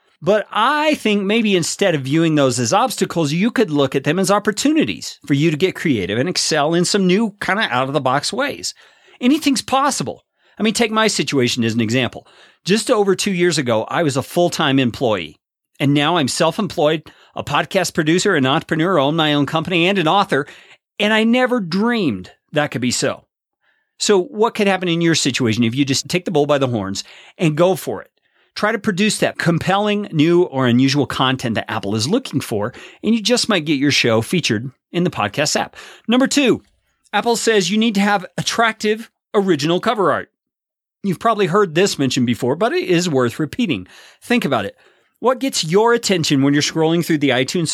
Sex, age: male, 40-59